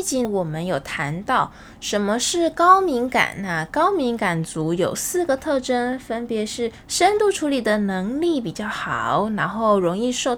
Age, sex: 10-29, female